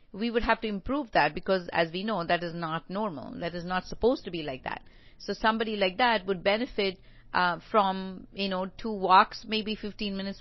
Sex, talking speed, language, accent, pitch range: female, 215 wpm, English, Indian, 185-220 Hz